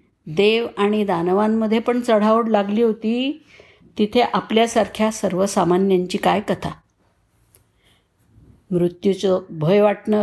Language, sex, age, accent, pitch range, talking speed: Marathi, female, 50-69, native, 175-230 Hz, 90 wpm